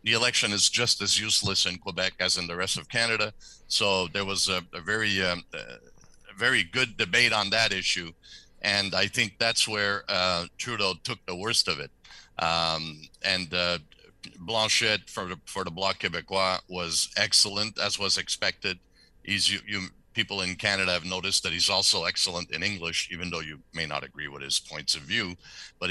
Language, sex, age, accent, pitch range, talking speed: English, male, 60-79, American, 85-100 Hz, 185 wpm